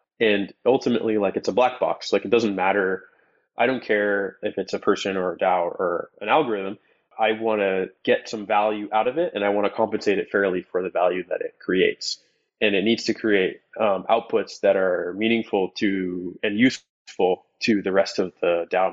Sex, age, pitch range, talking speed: male, 20-39, 100-130 Hz, 200 wpm